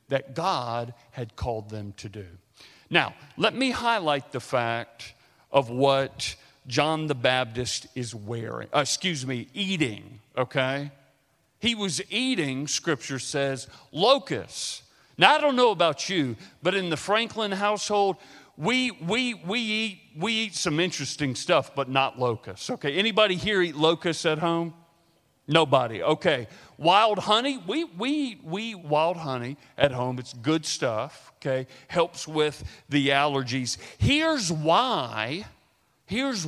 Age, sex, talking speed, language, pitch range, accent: 40-59, male, 135 wpm, English, 130-190 Hz, American